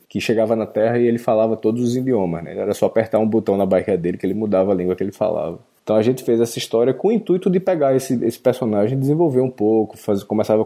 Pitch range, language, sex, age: 100-125 Hz, Portuguese, male, 20-39